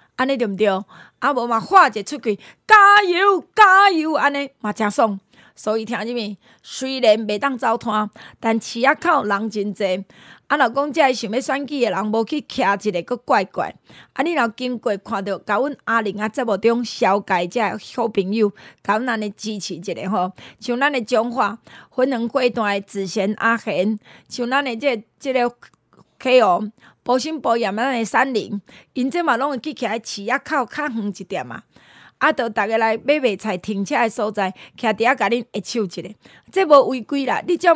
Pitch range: 210-265 Hz